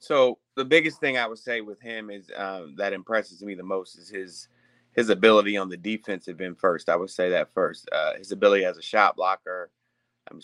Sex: male